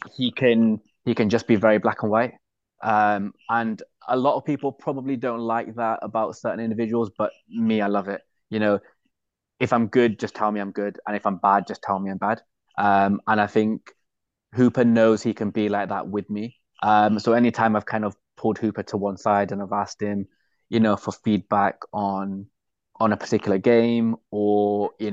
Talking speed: 205 wpm